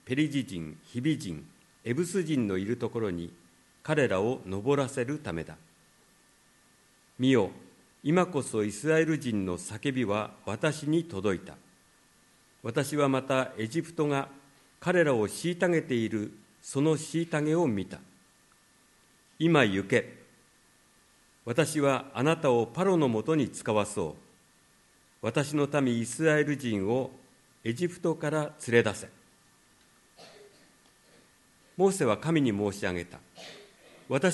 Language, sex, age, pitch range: Japanese, male, 50-69, 110-155 Hz